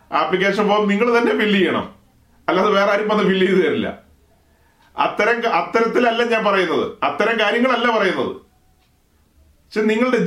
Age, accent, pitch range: 40-59, native, 165-215 Hz